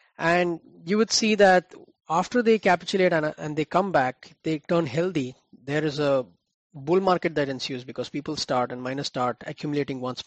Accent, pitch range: Indian, 140-180 Hz